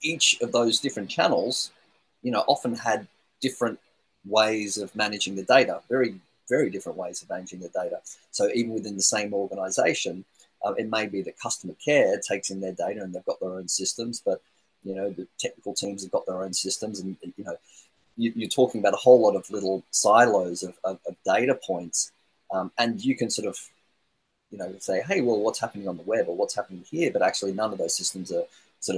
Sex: male